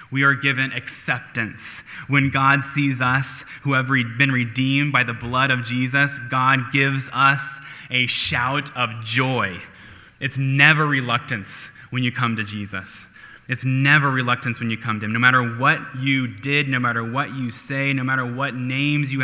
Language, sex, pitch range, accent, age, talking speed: English, male, 115-135 Hz, American, 10-29, 170 wpm